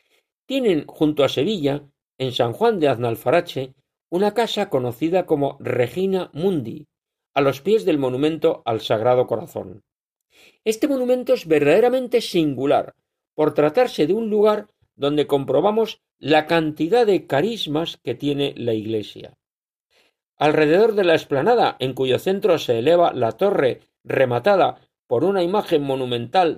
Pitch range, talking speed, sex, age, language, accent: 140-195 Hz, 135 wpm, male, 50-69, Spanish, Spanish